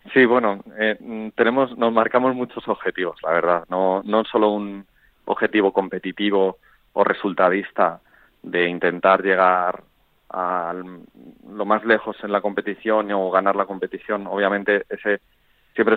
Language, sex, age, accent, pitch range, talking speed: Spanish, male, 30-49, Spanish, 90-105 Hz, 130 wpm